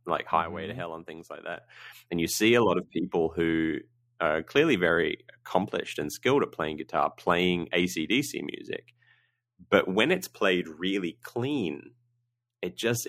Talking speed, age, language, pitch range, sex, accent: 165 wpm, 30-49, English, 90-120 Hz, male, Australian